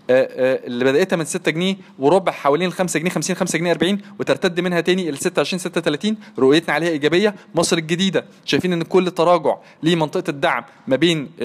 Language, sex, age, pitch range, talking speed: Arabic, male, 20-39, 160-185 Hz, 175 wpm